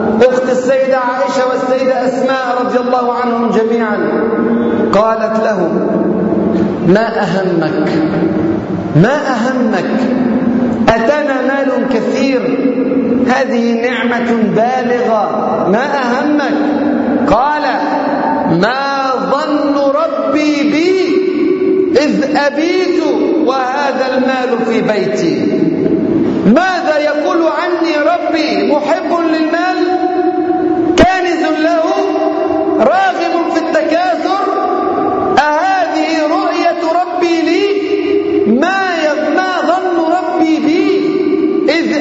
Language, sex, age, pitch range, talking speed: Arabic, male, 50-69, 255-345 Hz, 75 wpm